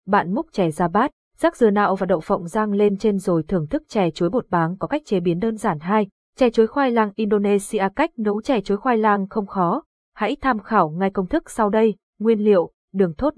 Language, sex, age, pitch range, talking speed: Vietnamese, female, 20-39, 190-240 Hz, 240 wpm